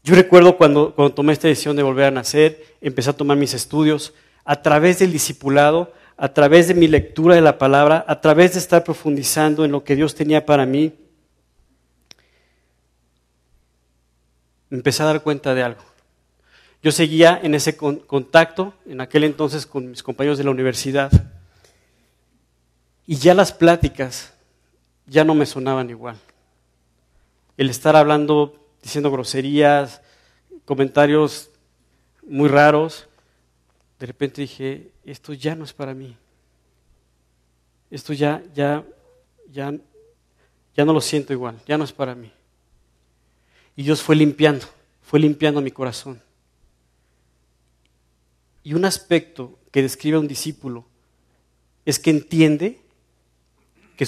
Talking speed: 130 wpm